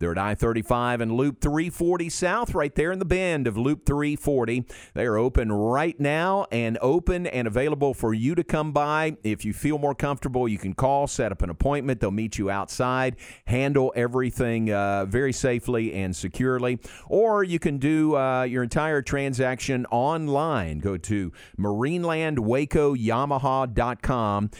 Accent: American